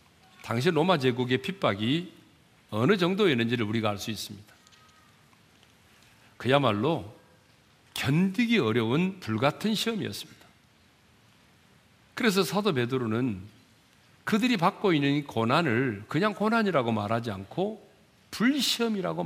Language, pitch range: Korean, 115-195 Hz